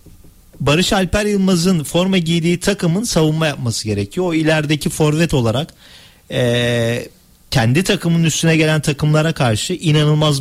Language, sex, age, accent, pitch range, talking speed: Turkish, male, 40-59, native, 125-155 Hz, 120 wpm